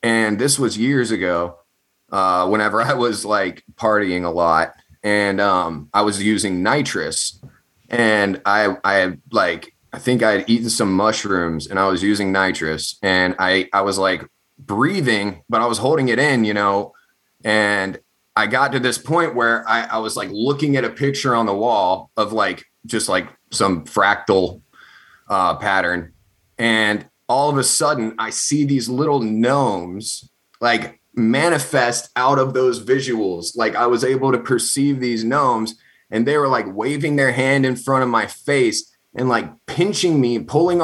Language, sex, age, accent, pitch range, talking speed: English, male, 30-49, American, 100-130 Hz, 170 wpm